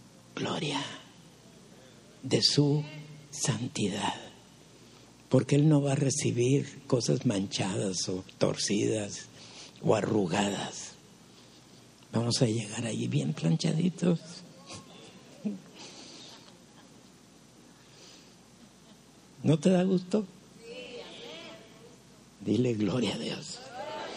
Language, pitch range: Spanish, 140-180 Hz